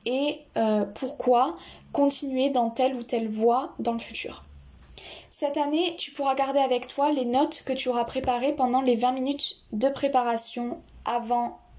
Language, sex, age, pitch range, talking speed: French, female, 10-29, 235-275 Hz, 165 wpm